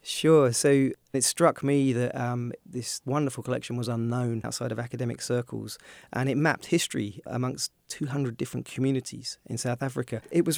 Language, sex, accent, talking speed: English, male, British, 165 wpm